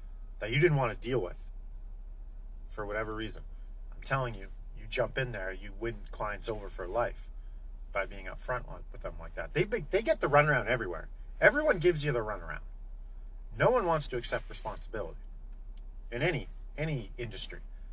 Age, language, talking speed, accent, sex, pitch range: 40-59, English, 175 wpm, American, male, 105-145 Hz